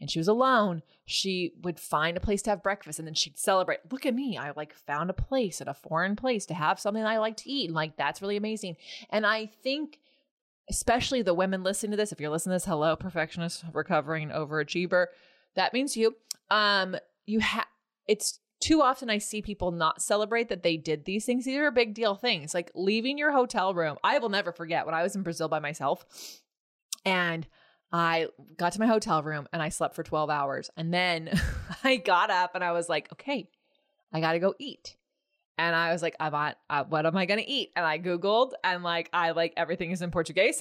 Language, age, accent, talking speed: English, 20-39, American, 220 wpm